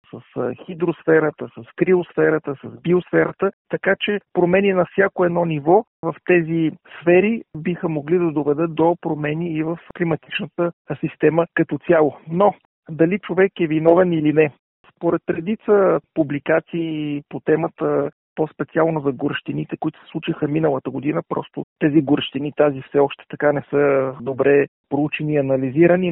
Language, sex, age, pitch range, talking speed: Bulgarian, male, 40-59, 150-180 Hz, 140 wpm